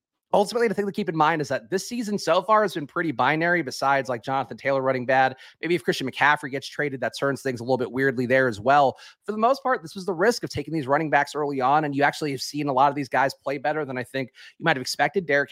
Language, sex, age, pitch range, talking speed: English, male, 30-49, 140-180 Hz, 285 wpm